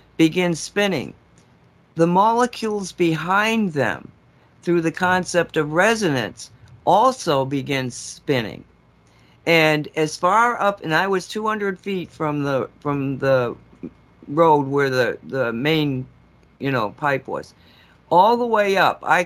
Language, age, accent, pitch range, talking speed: English, 50-69, American, 135-175 Hz, 130 wpm